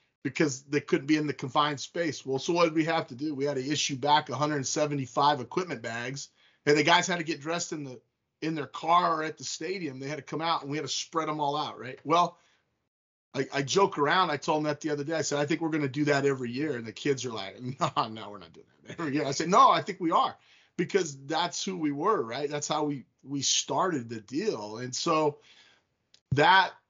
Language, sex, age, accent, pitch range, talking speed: English, male, 30-49, American, 130-155 Hz, 250 wpm